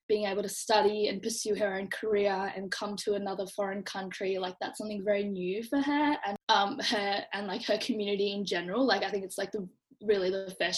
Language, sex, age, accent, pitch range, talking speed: English, female, 10-29, Australian, 200-235 Hz, 225 wpm